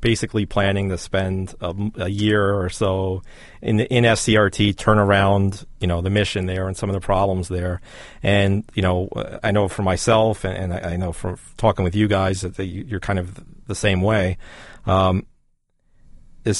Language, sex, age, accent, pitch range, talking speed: English, male, 40-59, American, 95-105 Hz, 190 wpm